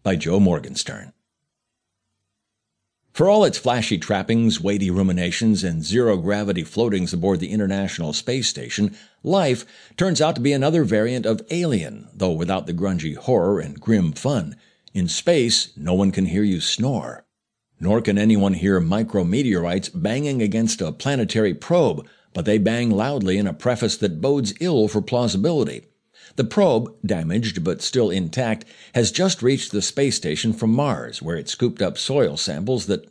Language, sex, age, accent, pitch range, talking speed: English, male, 60-79, American, 100-140 Hz, 155 wpm